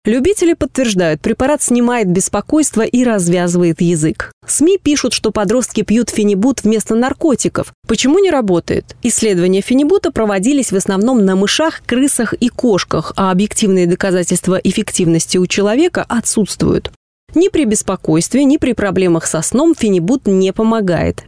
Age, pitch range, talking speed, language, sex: 20-39, 185-250 Hz, 135 wpm, Russian, female